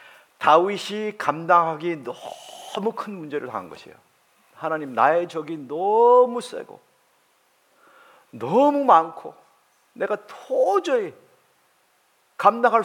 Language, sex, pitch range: Korean, male, 140-220 Hz